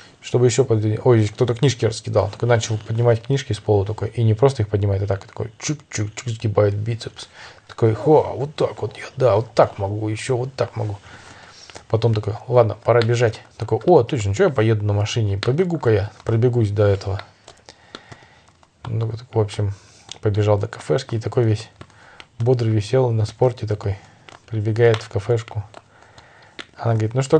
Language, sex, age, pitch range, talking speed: Russian, male, 20-39, 105-125 Hz, 175 wpm